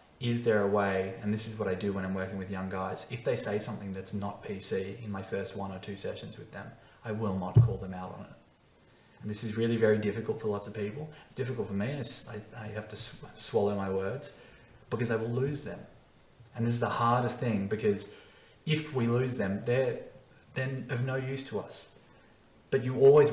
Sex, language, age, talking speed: male, English, 20-39, 225 wpm